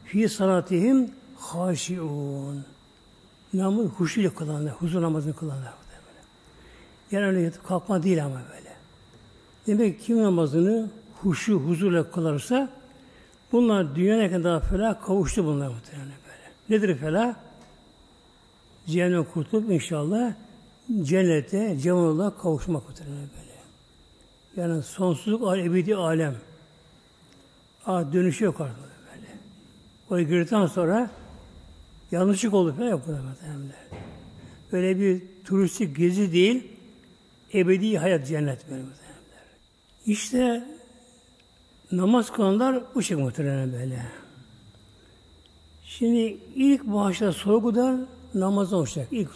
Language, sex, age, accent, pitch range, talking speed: Turkish, male, 60-79, native, 145-205 Hz, 90 wpm